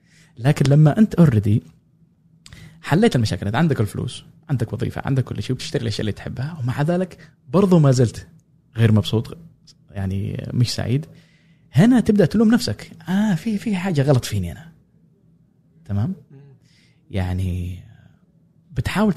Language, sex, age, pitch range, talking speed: Arabic, male, 20-39, 115-165 Hz, 130 wpm